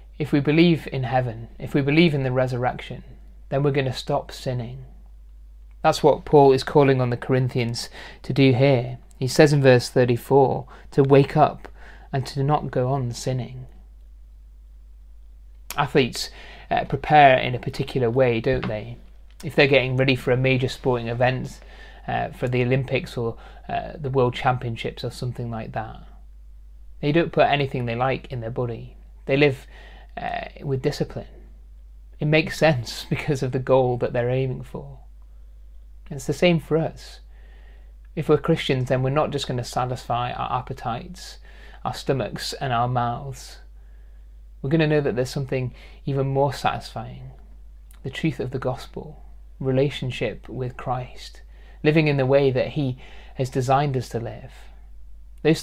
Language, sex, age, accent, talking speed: English, male, 30-49, British, 160 wpm